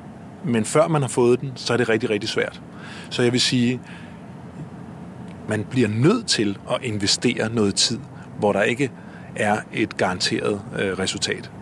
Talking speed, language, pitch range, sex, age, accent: 165 wpm, Danish, 110-135 Hz, male, 30-49, native